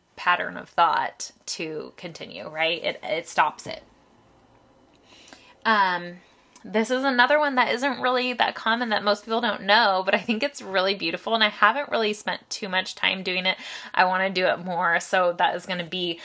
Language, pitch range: English, 180-230 Hz